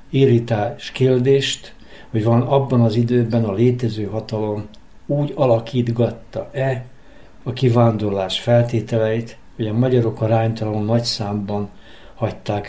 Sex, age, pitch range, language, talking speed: male, 60-79, 110-130 Hz, Hungarian, 100 wpm